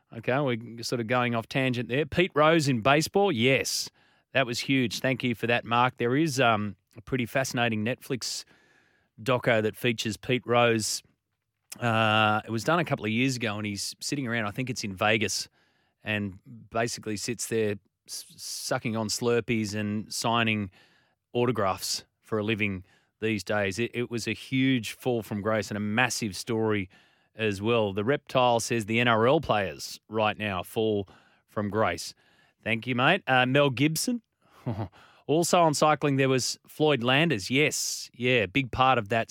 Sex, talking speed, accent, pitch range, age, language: male, 170 wpm, Australian, 110-135 Hz, 30-49, English